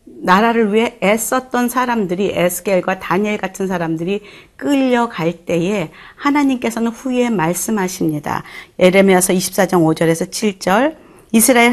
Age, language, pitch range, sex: 40-59, Korean, 175-225 Hz, female